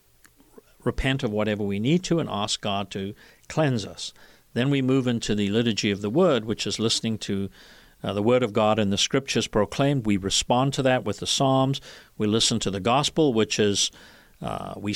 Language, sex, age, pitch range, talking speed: English, male, 50-69, 100-125 Hz, 200 wpm